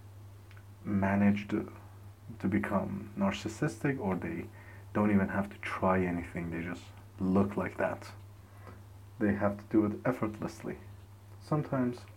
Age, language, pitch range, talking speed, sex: 30-49, English, 100-115 Hz, 120 wpm, male